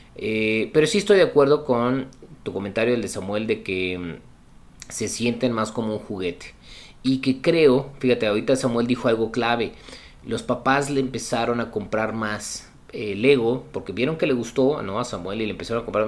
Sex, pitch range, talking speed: male, 110-135 Hz, 185 wpm